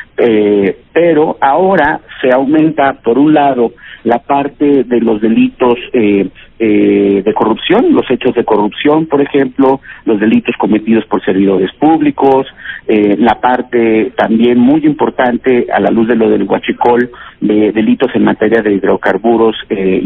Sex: male